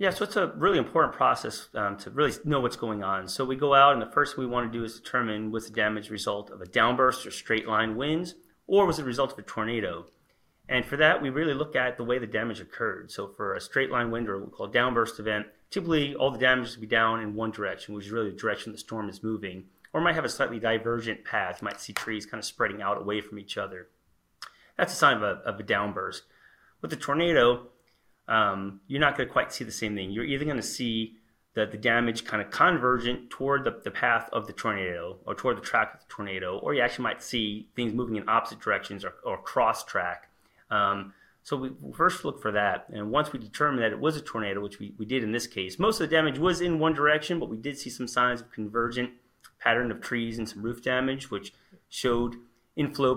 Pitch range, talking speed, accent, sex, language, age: 110-135 Hz, 245 wpm, American, male, English, 30-49